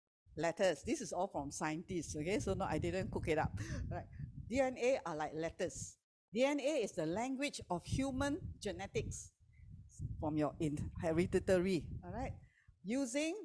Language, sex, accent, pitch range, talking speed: English, female, Malaysian, 175-255 Hz, 145 wpm